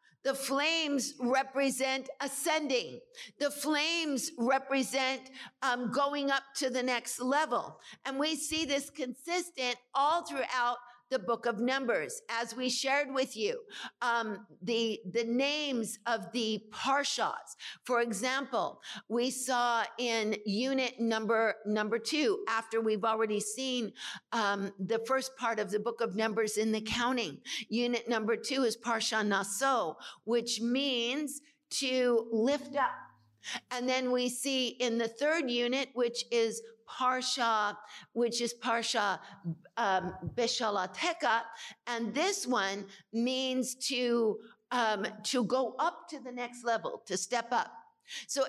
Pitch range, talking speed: 230-275 Hz, 130 wpm